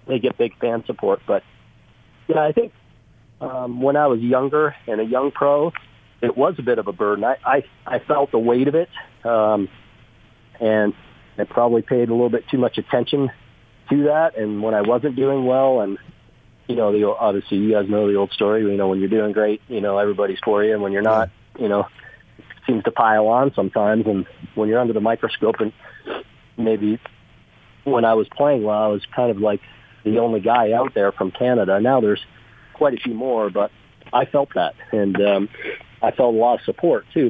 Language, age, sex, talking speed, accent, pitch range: English, 40-59, male, 210 wpm, American, 105-125 Hz